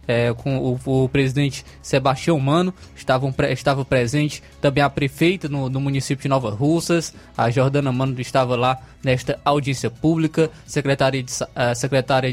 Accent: Brazilian